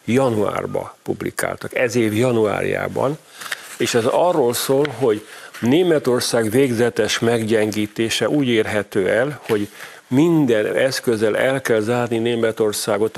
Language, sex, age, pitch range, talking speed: Hungarian, male, 50-69, 110-135 Hz, 105 wpm